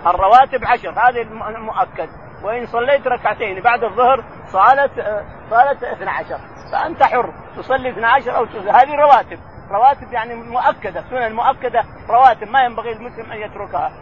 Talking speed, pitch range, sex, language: 135 wpm, 215-265 Hz, male, Arabic